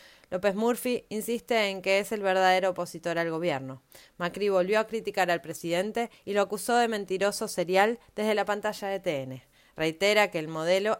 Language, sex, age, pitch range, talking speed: Spanish, female, 20-39, 170-205 Hz, 175 wpm